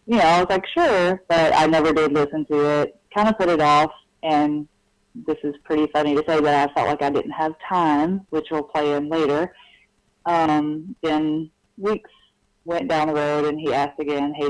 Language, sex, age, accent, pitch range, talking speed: English, female, 30-49, American, 145-165 Hz, 205 wpm